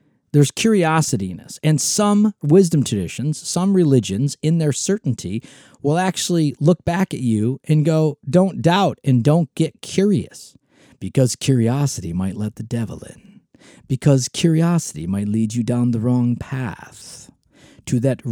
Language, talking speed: English, 140 wpm